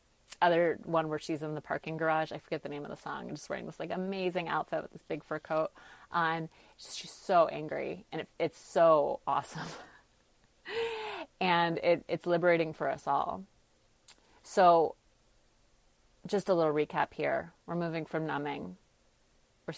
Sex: female